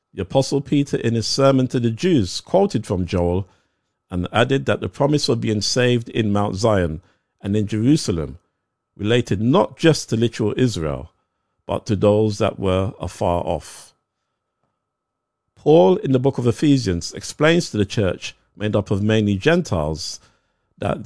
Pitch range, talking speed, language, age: 95-125 Hz, 155 wpm, English, 50-69